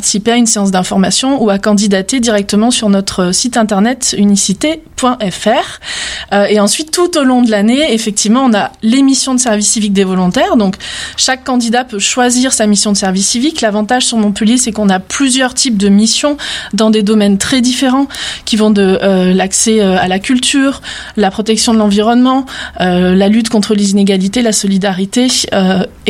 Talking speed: 170 wpm